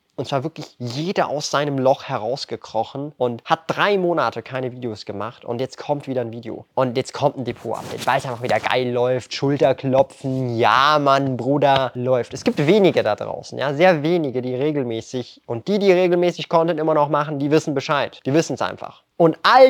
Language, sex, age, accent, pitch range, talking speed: German, male, 20-39, German, 130-175 Hz, 195 wpm